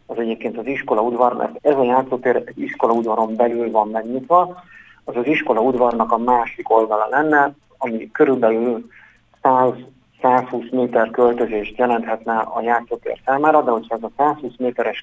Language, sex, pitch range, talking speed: Hungarian, male, 115-135 Hz, 135 wpm